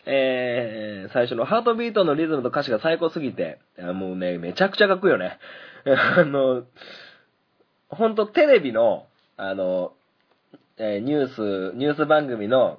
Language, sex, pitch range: Japanese, male, 90-145 Hz